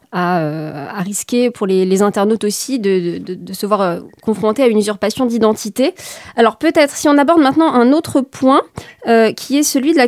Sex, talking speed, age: female, 195 wpm, 20-39